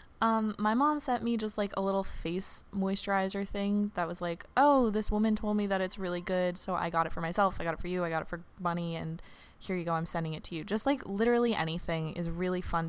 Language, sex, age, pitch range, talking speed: English, female, 20-39, 170-210 Hz, 260 wpm